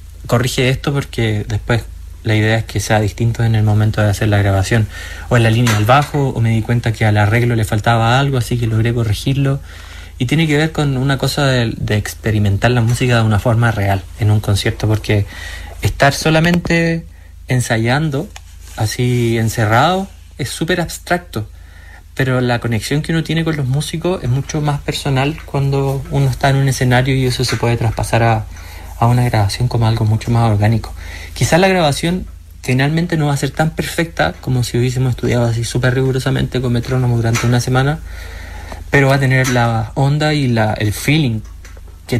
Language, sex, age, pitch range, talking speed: Spanish, male, 30-49, 110-140 Hz, 185 wpm